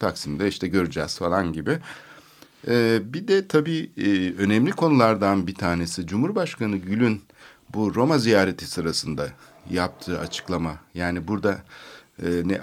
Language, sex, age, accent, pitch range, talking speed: Turkish, male, 60-79, native, 90-120 Hz, 110 wpm